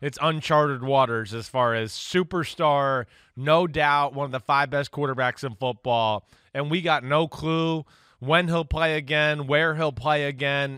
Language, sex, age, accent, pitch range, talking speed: English, male, 20-39, American, 145-195 Hz, 165 wpm